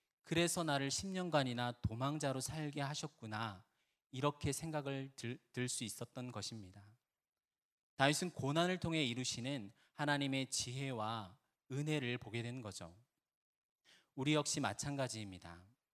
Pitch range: 125-155 Hz